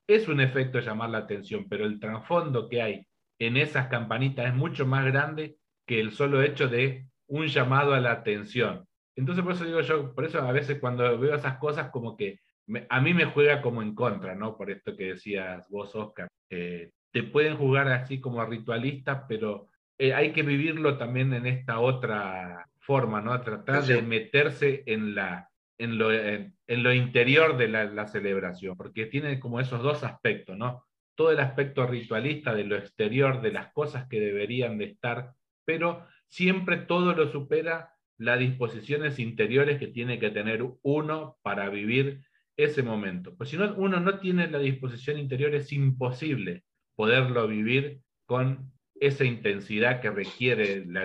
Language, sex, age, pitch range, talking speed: Spanish, male, 40-59, 110-145 Hz, 175 wpm